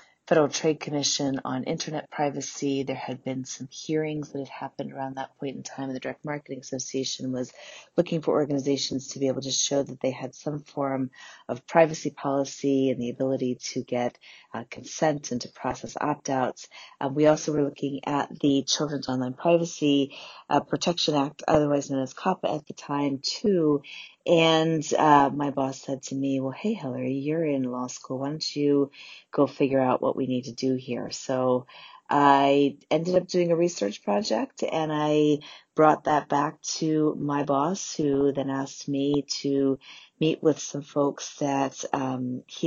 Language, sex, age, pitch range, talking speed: English, female, 30-49, 135-155 Hz, 175 wpm